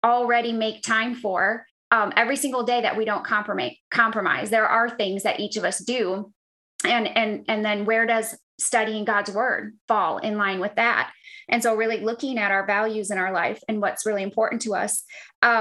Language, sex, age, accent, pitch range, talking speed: English, female, 20-39, American, 215-240 Hz, 200 wpm